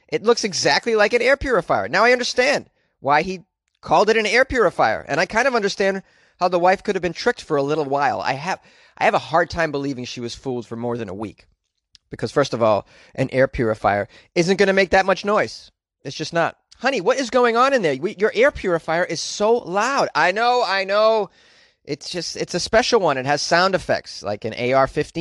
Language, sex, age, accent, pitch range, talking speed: English, male, 30-49, American, 135-205 Hz, 230 wpm